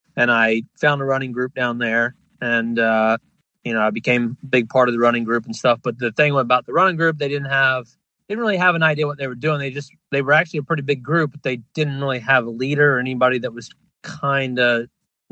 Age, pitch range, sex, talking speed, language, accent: 30-49, 120-145 Hz, male, 255 wpm, English, American